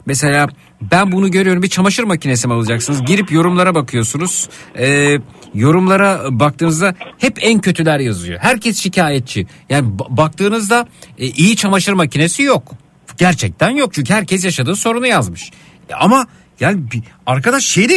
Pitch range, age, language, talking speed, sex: 145-215 Hz, 50-69, Turkish, 140 wpm, male